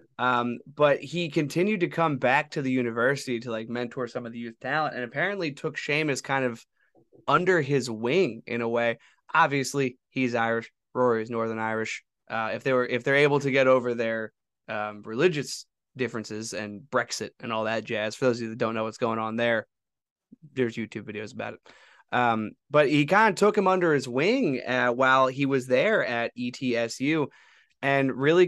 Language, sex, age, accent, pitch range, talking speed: English, male, 20-39, American, 115-150 Hz, 195 wpm